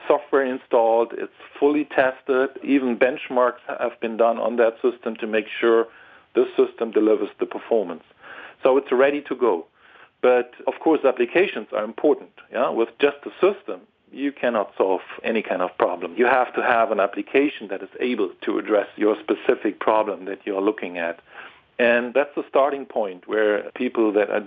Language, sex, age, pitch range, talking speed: English, male, 50-69, 110-130 Hz, 175 wpm